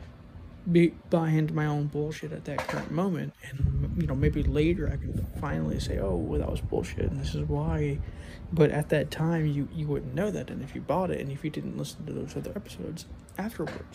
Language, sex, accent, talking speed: English, male, American, 220 wpm